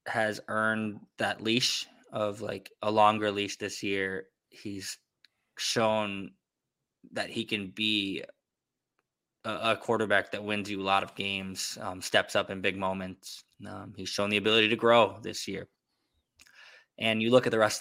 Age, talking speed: 20-39, 160 wpm